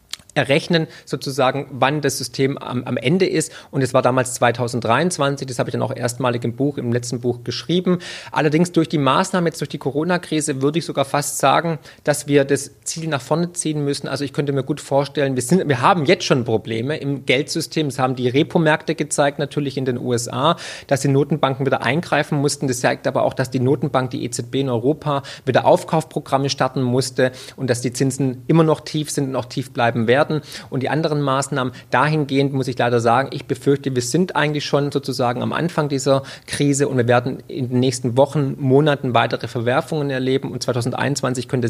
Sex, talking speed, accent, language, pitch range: male, 200 wpm, German, German, 130-150 Hz